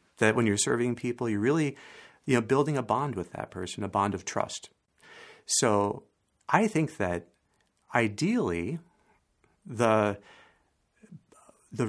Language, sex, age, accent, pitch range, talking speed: English, male, 40-59, American, 95-125 Hz, 120 wpm